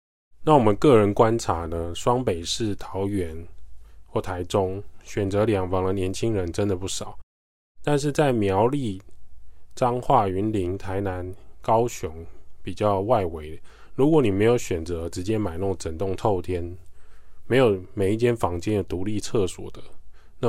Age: 20-39